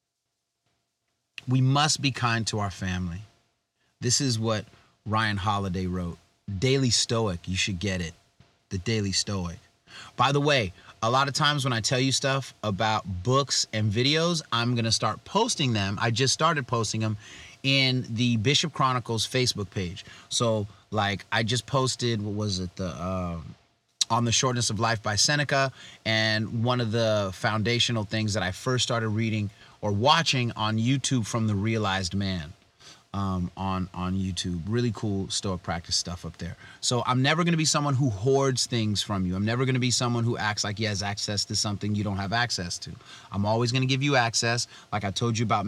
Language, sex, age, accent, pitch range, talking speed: English, male, 30-49, American, 100-130 Hz, 190 wpm